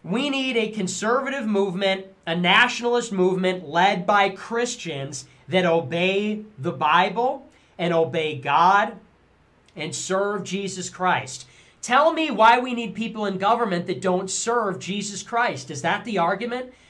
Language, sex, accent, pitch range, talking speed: English, male, American, 170-245 Hz, 140 wpm